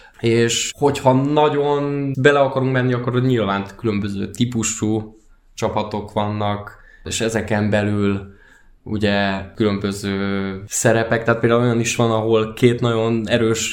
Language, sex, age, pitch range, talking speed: Hungarian, male, 20-39, 105-125 Hz, 120 wpm